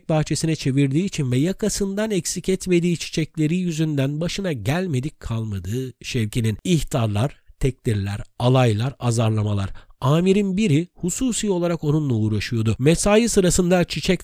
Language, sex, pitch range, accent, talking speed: Turkish, male, 115-170 Hz, native, 110 wpm